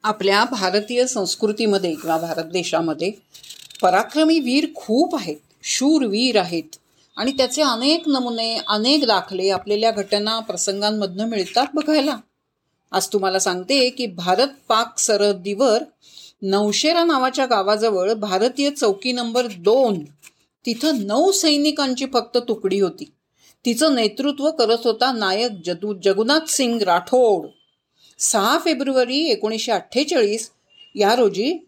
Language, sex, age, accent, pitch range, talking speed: Marathi, female, 40-59, native, 210-305 Hz, 110 wpm